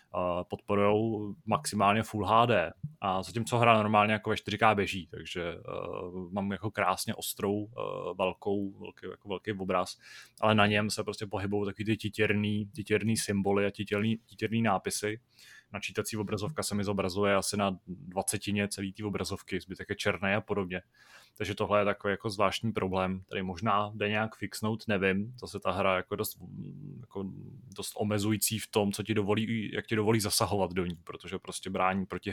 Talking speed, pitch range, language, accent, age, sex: 165 wpm, 95-110 Hz, Czech, native, 30-49, male